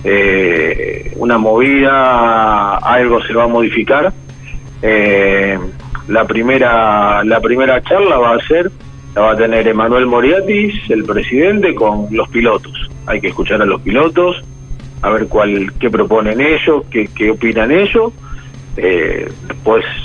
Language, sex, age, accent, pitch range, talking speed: Spanish, male, 40-59, Argentinian, 110-135 Hz, 140 wpm